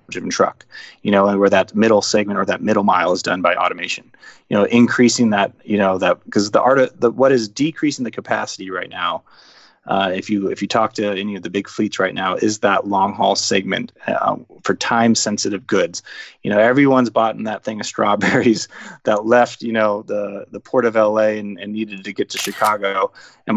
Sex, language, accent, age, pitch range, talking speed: male, English, American, 20-39, 100-120 Hz, 220 wpm